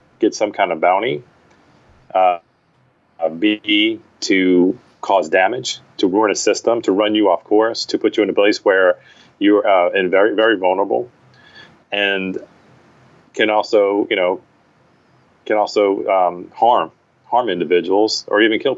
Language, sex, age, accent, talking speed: English, male, 30-49, American, 150 wpm